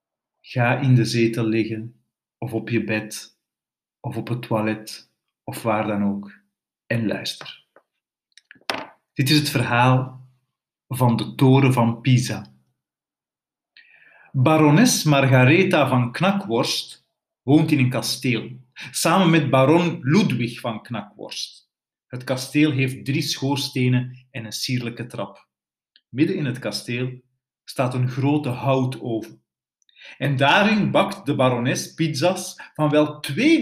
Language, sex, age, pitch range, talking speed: Dutch, male, 50-69, 120-155 Hz, 120 wpm